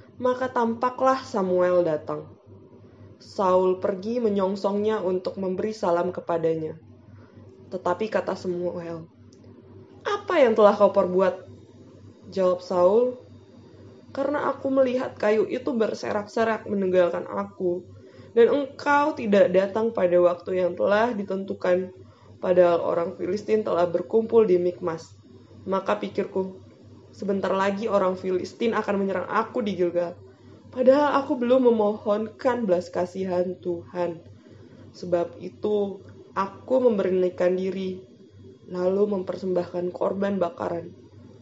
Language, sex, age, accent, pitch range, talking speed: Indonesian, female, 20-39, native, 170-210 Hz, 105 wpm